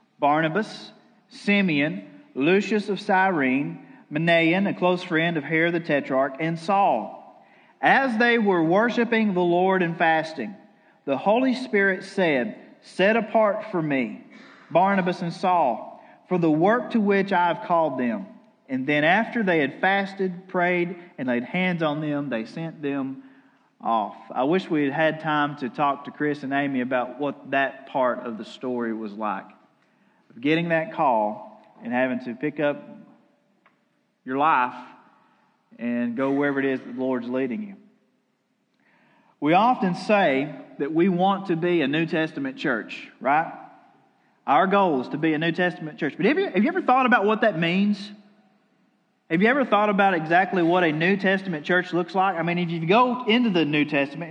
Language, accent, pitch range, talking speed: English, American, 150-205 Hz, 170 wpm